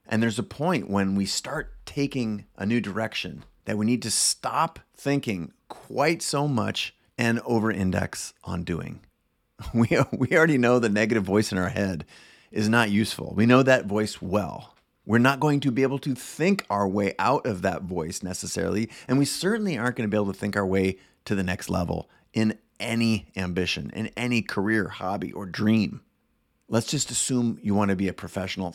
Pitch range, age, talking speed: 95-120 Hz, 30-49, 185 wpm